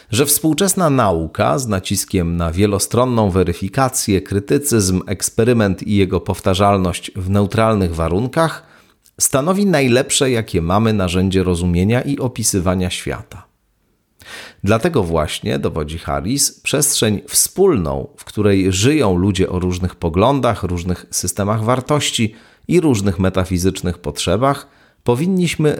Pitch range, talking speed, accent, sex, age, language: 95-135 Hz, 105 wpm, native, male, 40-59, Polish